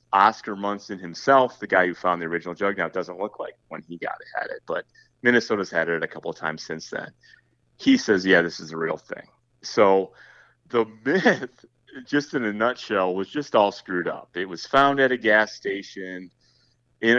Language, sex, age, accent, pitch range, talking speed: English, male, 30-49, American, 95-120 Hz, 205 wpm